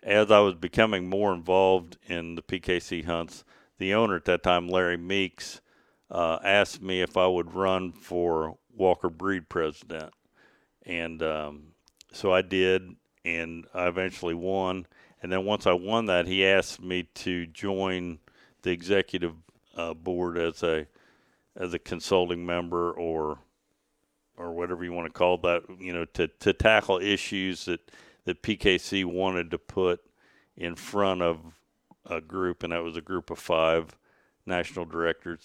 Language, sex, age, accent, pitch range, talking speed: English, male, 50-69, American, 85-95 Hz, 155 wpm